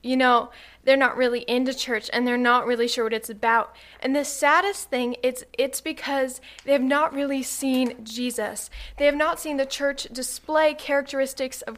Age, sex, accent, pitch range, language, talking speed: 20-39, female, American, 245-290 Hz, English, 185 wpm